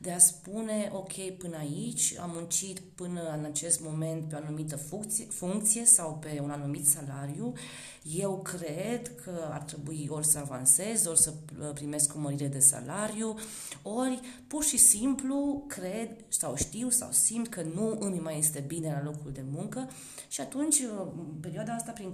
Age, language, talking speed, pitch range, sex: 30-49, Romanian, 165 wpm, 150-210 Hz, female